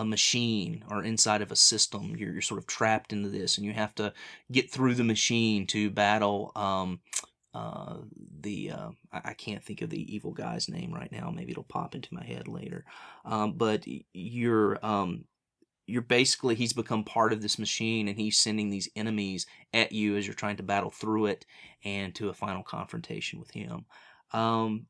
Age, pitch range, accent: 30-49, 105-115 Hz, American